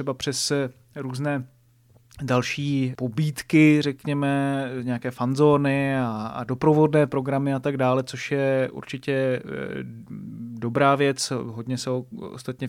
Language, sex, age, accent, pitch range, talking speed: Czech, male, 30-49, native, 130-140 Hz, 110 wpm